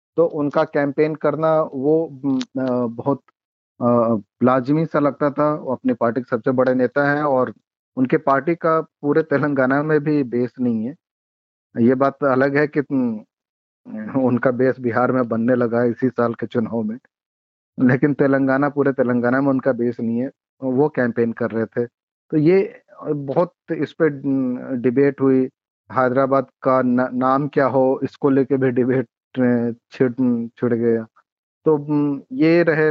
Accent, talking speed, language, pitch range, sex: native, 150 wpm, Hindi, 120-140 Hz, male